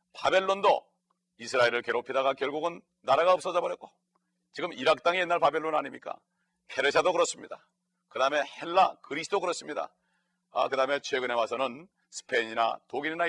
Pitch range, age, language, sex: 130-175 Hz, 40-59, Korean, male